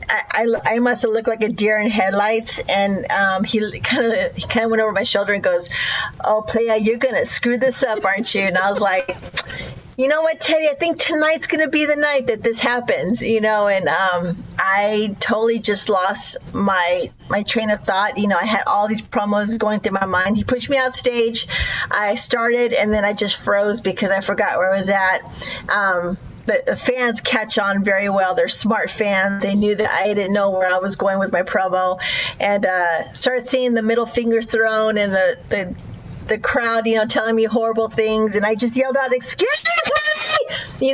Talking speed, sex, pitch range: 210 wpm, female, 200-245 Hz